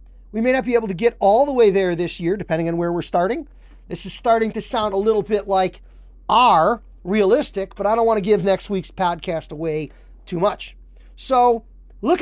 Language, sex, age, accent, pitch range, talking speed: English, male, 40-59, American, 180-260 Hz, 210 wpm